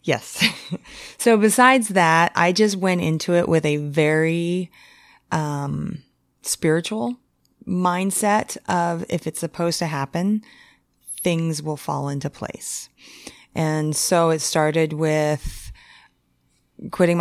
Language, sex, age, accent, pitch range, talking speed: English, female, 30-49, American, 150-190 Hz, 110 wpm